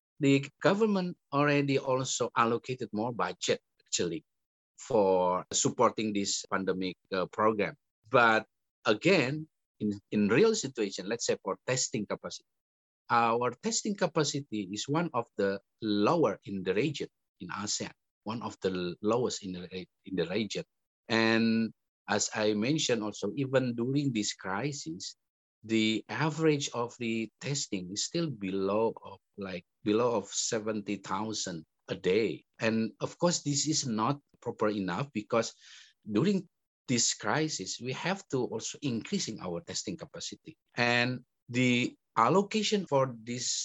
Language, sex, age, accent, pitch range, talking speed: English, male, 50-69, Indonesian, 105-155 Hz, 130 wpm